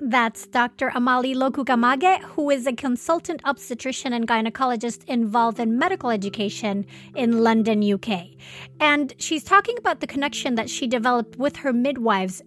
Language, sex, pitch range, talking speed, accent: English, female, 215-275 Hz, 145 wpm, American